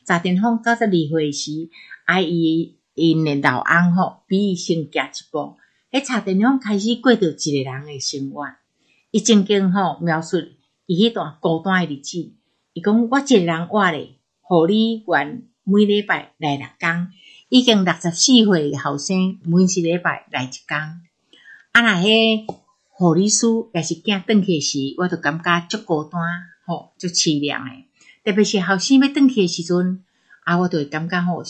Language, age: Chinese, 60-79